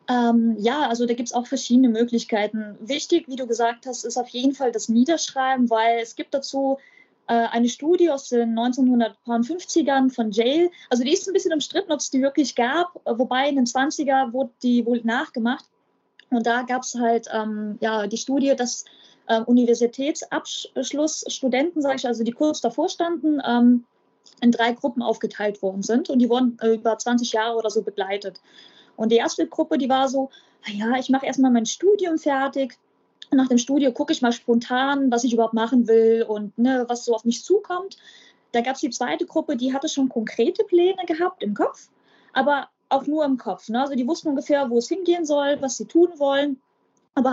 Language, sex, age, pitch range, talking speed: German, female, 20-39, 235-300 Hz, 195 wpm